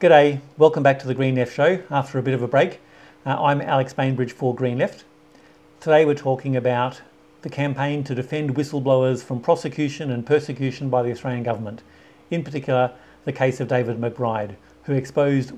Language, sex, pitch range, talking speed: English, male, 120-145 Hz, 180 wpm